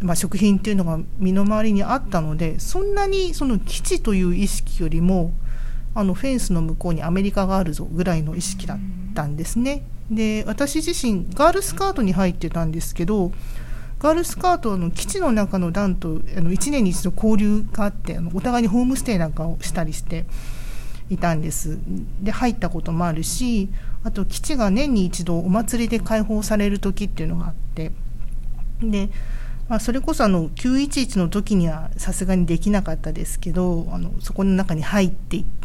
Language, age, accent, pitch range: Japanese, 40-59, native, 165-215 Hz